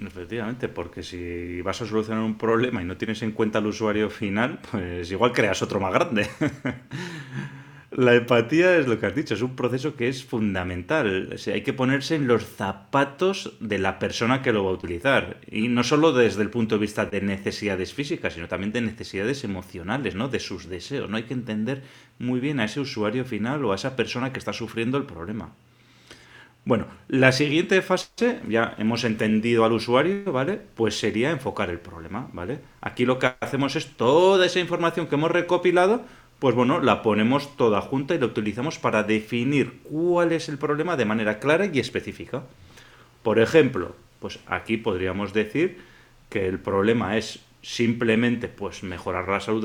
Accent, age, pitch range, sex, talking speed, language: Spanish, 30-49, 110-140 Hz, male, 185 wpm, Spanish